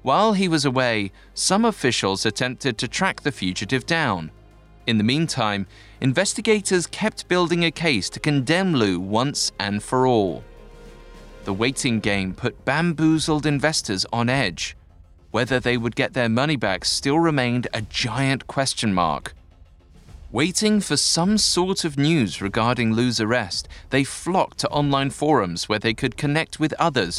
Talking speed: 150 wpm